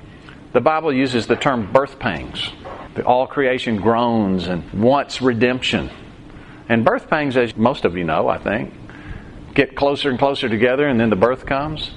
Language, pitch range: English, 120-145 Hz